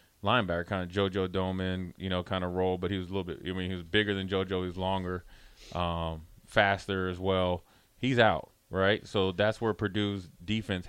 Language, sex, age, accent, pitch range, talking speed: English, male, 30-49, American, 90-105 Hz, 205 wpm